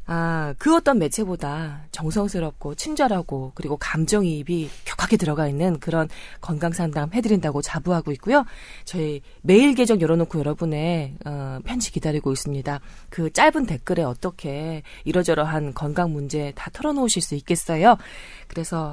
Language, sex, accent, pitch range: Korean, female, native, 155-220 Hz